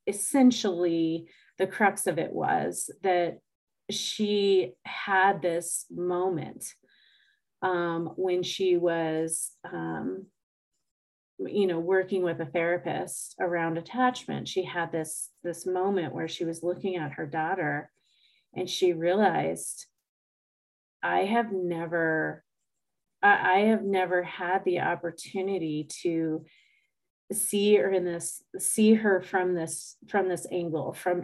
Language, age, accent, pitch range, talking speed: English, 30-49, American, 160-190 Hz, 120 wpm